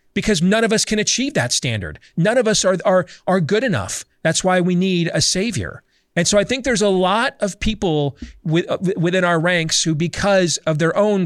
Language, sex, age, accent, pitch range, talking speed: English, male, 40-59, American, 145-185 Hz, 215 wpm